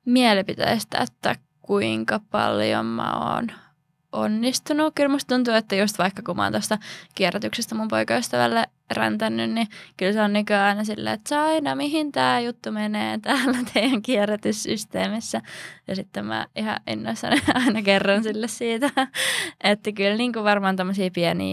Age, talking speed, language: 20-39, 135 wpm, Finnish